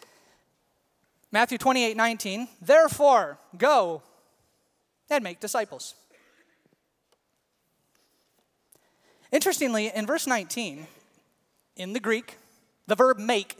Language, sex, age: English, male, 30-49